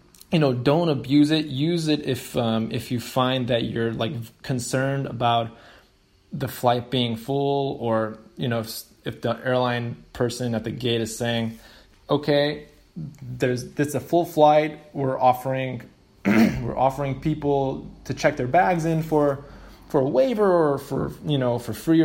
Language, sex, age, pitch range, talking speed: English, male, 20-39, 120-150 Hz, 165 wpm